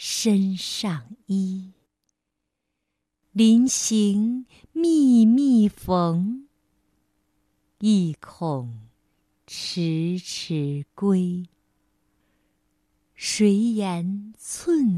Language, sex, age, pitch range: Chinese, female, 50-69, 155-210 Hz